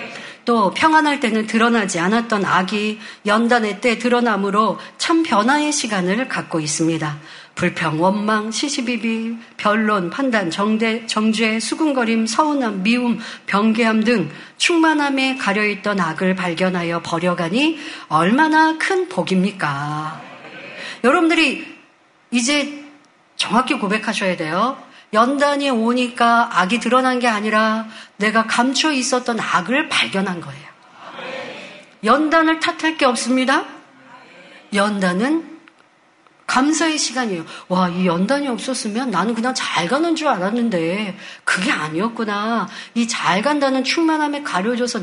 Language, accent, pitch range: Korean, native, 205-280 Hz